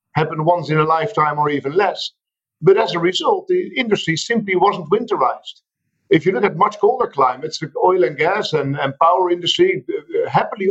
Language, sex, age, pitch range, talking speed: English, male, 50-69, 150-210 Hz, 185 wpm